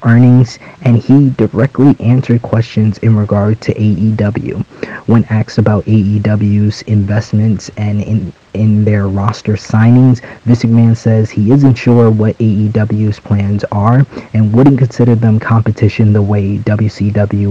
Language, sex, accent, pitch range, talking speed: English, male, American, 105-115 Hz, 130 wpm